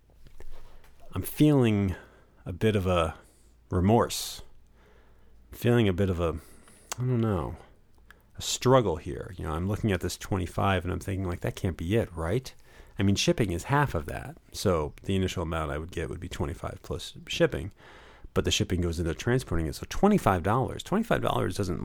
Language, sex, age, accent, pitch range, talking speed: English, male, 40-59, American, 90-125 Hz, 180 wpm